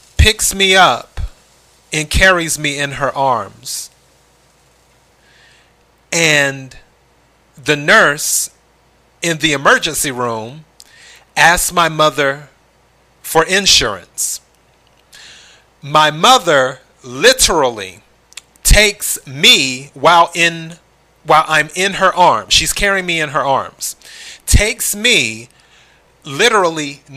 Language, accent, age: English, American, 40-59